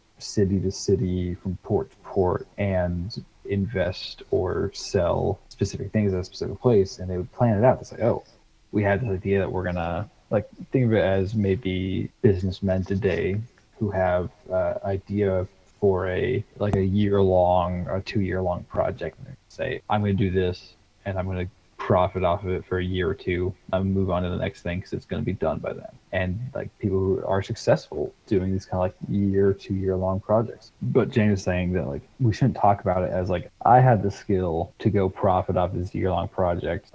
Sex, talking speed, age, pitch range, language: male, 210 wpm, 20-39, 90-100 Hz, English